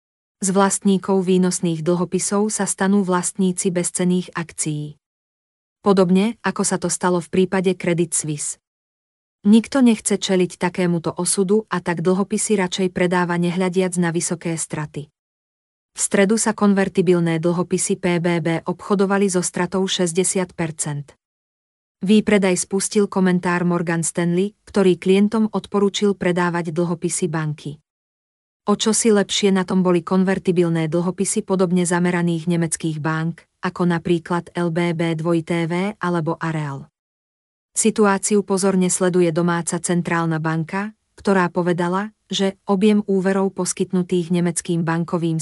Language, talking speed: Slovak, 115 wpm